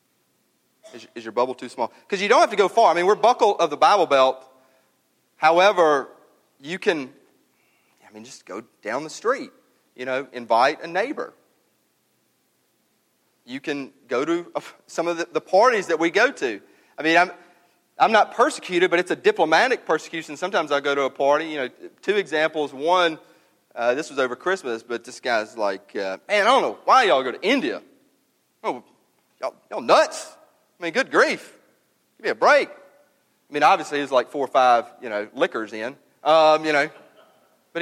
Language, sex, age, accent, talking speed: English, male, 40-59, American, 190 wpm